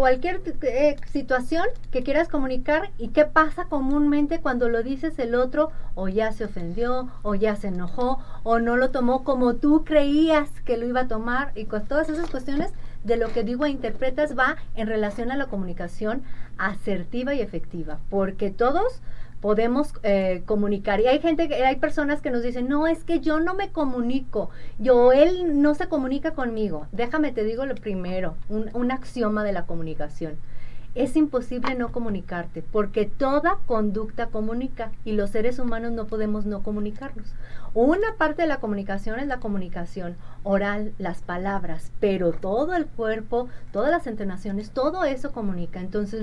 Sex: female